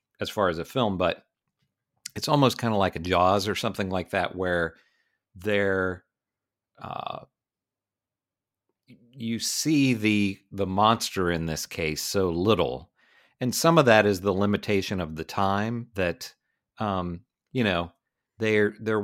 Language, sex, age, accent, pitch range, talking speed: English, male, 40-59, American, 90-110 Hz, 140 wpm